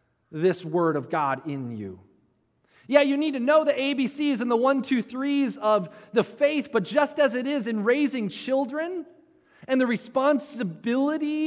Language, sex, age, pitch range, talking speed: English, male, 30-49, 145-230 Hz, 165 wpm